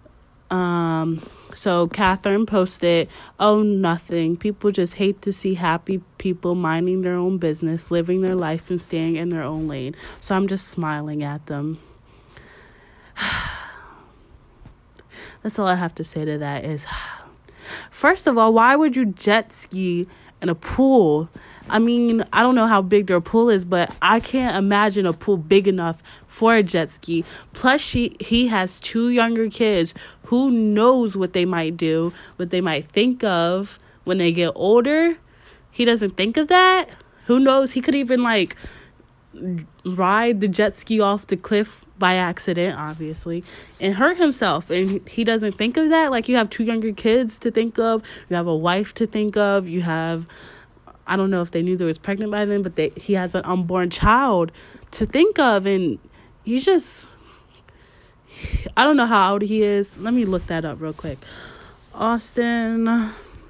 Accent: American